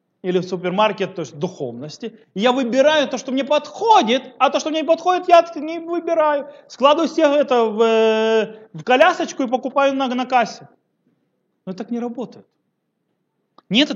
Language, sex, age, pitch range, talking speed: Russian, male, 30-49, 185-275 Hz, 165 wpm